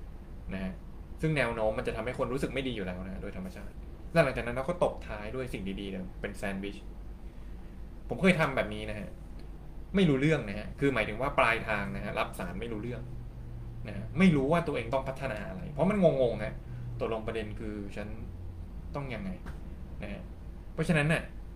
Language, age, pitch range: Thai, 20-39, 90-140 Hz